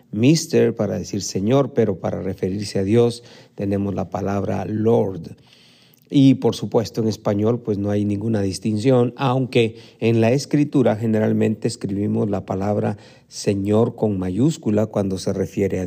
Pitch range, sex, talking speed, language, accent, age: 105-130 Hz, male, 145 wpm, Spanish, Mexican, 50-69